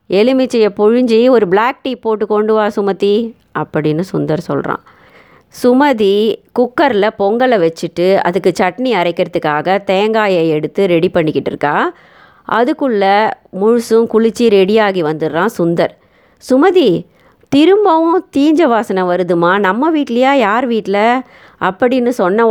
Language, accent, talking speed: Tamil, native, 105 wpm